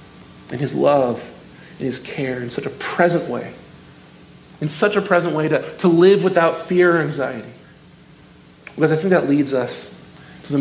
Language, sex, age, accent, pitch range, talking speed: English, male, 40-59, American, 130-165 Hz, 175 wpm